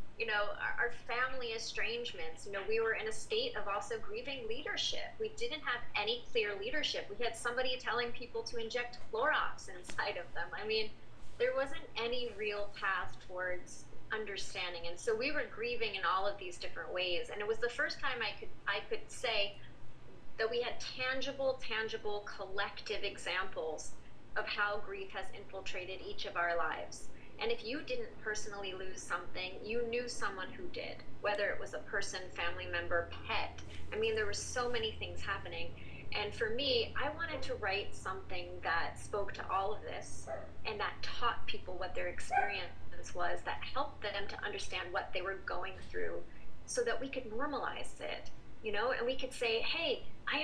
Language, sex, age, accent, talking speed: English, female, 30-49, American, 180 wpm